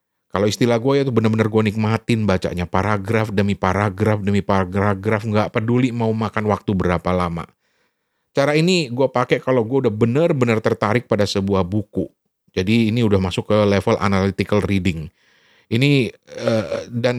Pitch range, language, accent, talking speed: 100-120 Hz, Indonesian, native, 150 wpm